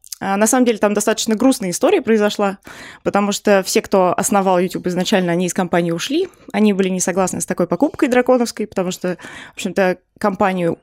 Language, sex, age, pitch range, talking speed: Russian, female, 20-39, 195-250 Hz, 175 wpm